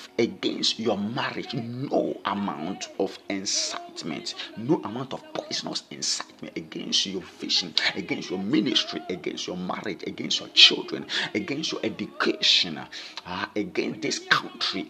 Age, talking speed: 50-69, 125 wpm